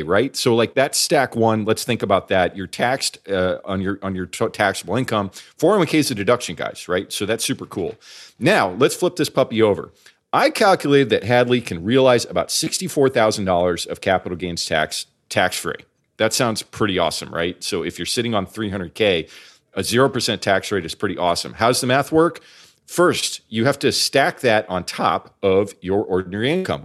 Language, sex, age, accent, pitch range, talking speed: English, male, 40-59, American, 100-130 Hz, 185 wpm